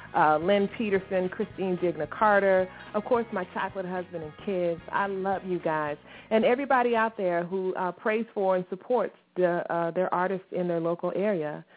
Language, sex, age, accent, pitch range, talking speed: English, female, 30-49, American, 175-230 Hz, 180 wpm